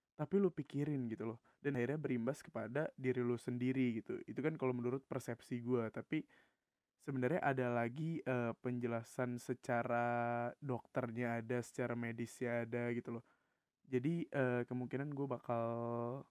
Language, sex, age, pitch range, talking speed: Indonesian, male, 20-39, 120-145 Hz, 140 wpm